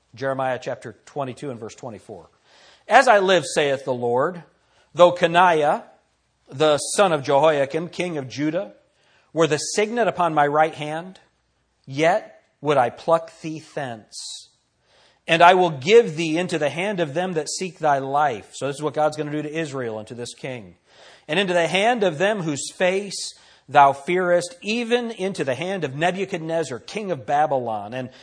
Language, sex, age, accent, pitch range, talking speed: English, male, 40-59, American, 140-180 Hz, 175 wpm